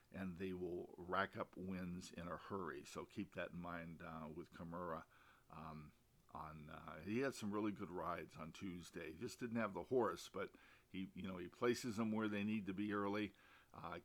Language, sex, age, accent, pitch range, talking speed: English, male, 50-69, American, 90-110 Hz, 200 wpm